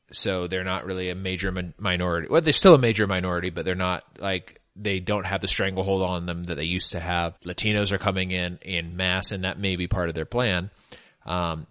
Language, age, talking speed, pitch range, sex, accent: English, 30-49, 225 wpm, 90-105 Hz, male, American